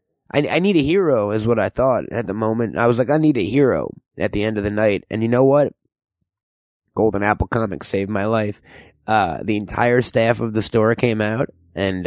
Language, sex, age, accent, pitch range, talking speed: English, male, 20-39, American, 110-150 Hz, 225 wpm